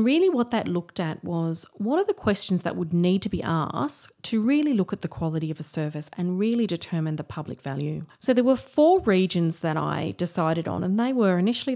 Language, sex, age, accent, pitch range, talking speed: English, female, 30-49, Australian, 165-220 Hz, 225 wpm